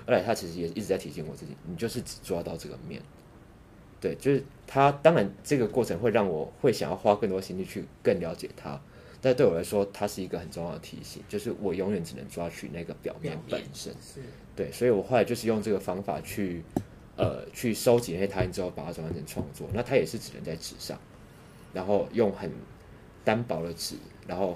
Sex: male